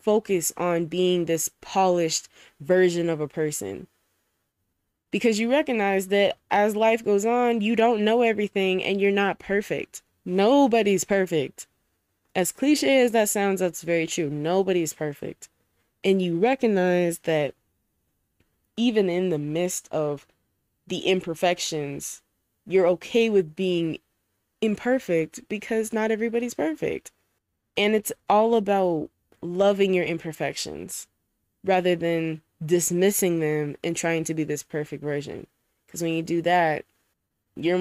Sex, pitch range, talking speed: female, 150-195 Hz, 130 wpm